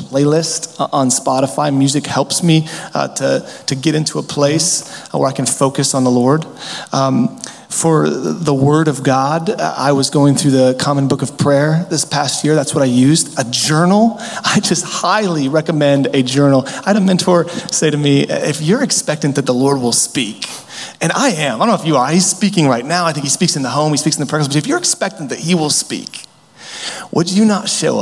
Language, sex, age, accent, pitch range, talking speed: English, male, 30-49, American, 135-165 Hz, 215 wpm